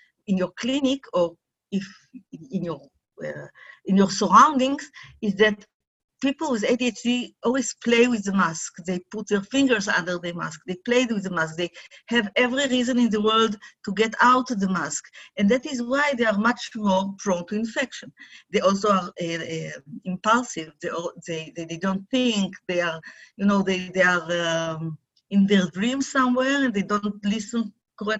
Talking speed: 180 wpm